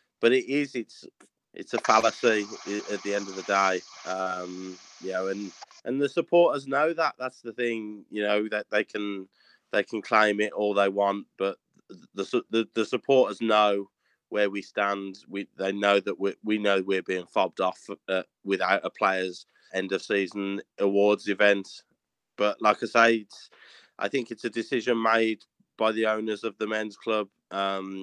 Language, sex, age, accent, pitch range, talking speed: English, male, 20-39, British, 100-110 Hz, 185 wpm